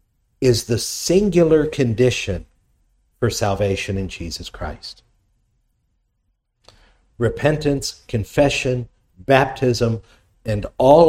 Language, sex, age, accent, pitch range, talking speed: English, male, 50-69, American, 100-125 Hz, 75 wpm